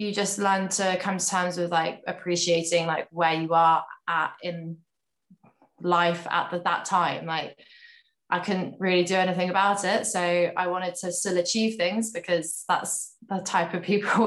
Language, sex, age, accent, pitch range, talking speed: English, female, 20-39, British, 170-190 Hz, 175 wpm